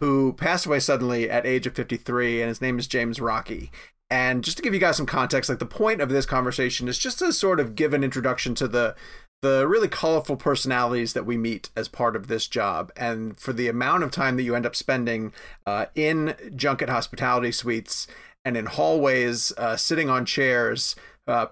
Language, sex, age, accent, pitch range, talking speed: English, male, 30-49, American, 120-145 Hz, 205 wpm